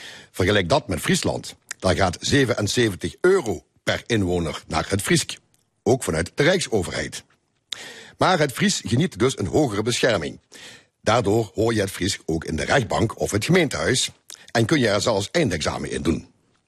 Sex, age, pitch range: male, 60-79, 95-130 Hz